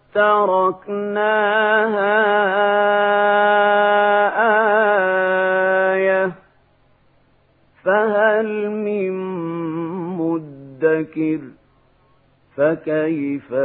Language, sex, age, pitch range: Arabic, male, 50-69, 160-210 Hz